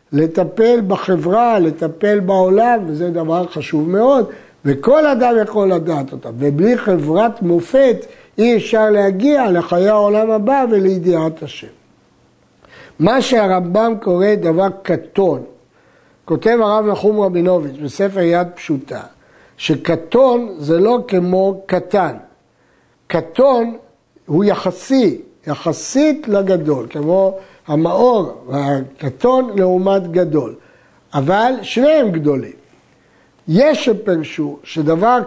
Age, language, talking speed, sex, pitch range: 60-79, Hebrew, 95 wpm, male, 170-230 Hz